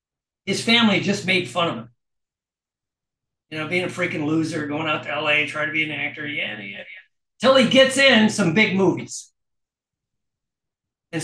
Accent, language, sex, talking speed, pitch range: American, English, male, 175 wpm, 140-210 Hz